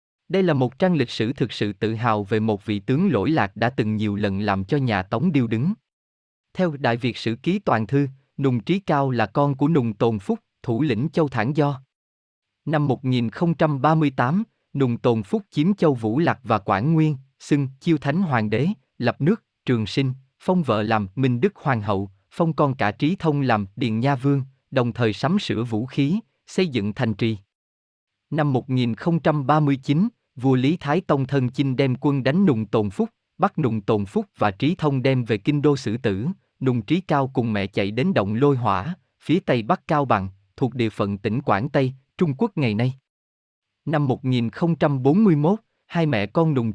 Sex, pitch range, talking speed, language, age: male, 110-155 Hz, 195 wpm, Vietnamese, 20-39